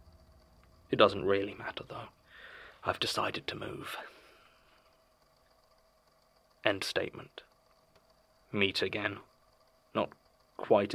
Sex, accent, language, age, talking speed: male, British, English, 20-39, 80 wpm